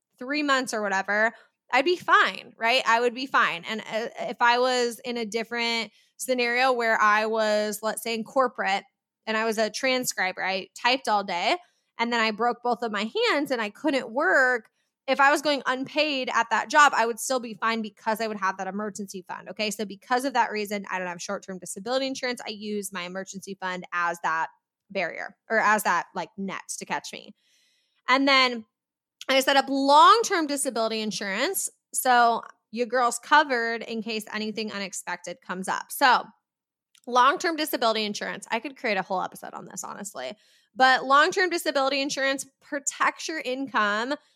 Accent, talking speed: American, 185 wpm